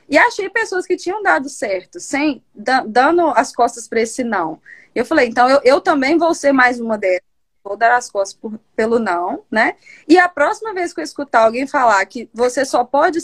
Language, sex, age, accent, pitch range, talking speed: Portuguese, female, 20-39, Brazilian, 215-300 Hz, 210 wpm